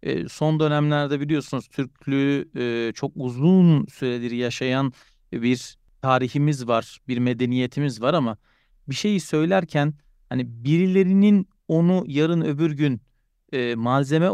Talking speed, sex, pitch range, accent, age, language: 105 wpm, male, 125-155 Hz, native, 40-59, Turkish